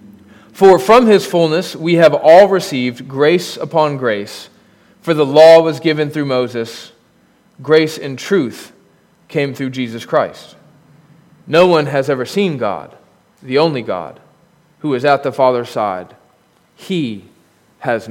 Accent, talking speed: American, 140 wpm